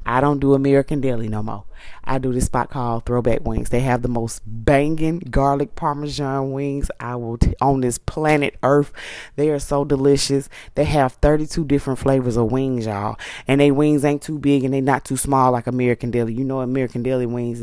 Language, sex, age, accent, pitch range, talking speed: English, female, 20-39, American, 120-145 Hz, 205 wpm